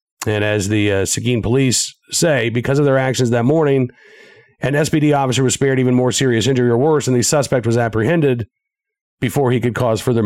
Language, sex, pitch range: English, male, 115-155 Hz